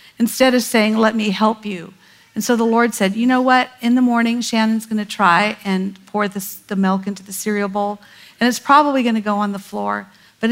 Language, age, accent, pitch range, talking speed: English, 50-69, American, 200-230 Hz, 230 wpm